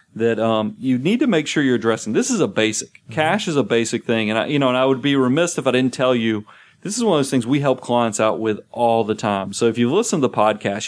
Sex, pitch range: male, 110-140 Hz